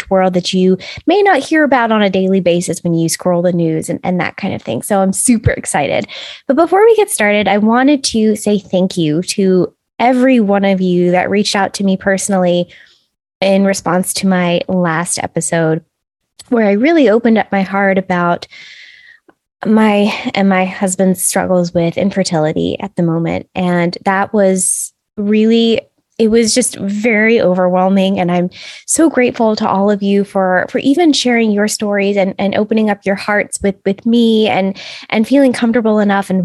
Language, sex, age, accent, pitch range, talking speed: English, female, 10-29, American, 185-230 Hz, 180 wpm